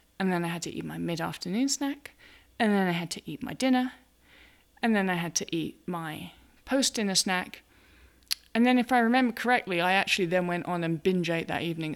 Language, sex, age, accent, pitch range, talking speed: English, female, 20-39, British, 170-215 Hz, 210 wpm